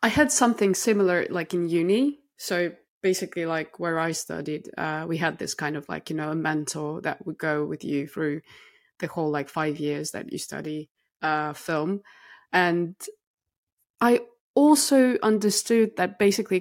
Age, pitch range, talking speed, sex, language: 20-39, 160-200 Hz, 165 wpm, female, English